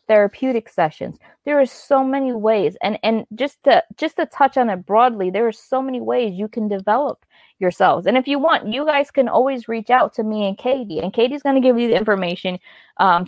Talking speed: 220 wpm